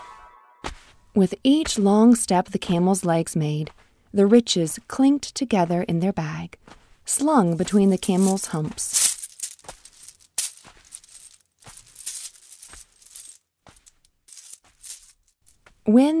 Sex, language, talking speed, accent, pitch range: female, English, 80 wpm, American, 170-245 Hz